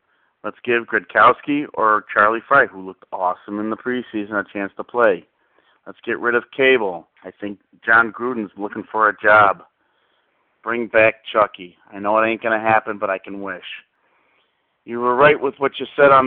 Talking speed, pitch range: 190 wpm, 105-125 Hz